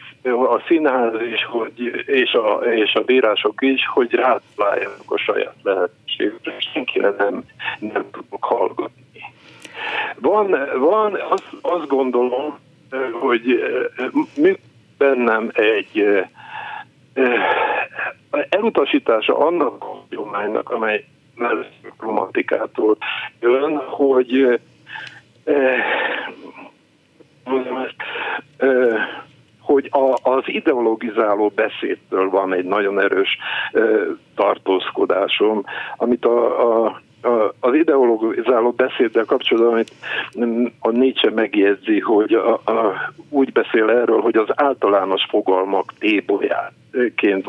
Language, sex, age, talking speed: Hungarian, male, 50-69, 95 wpm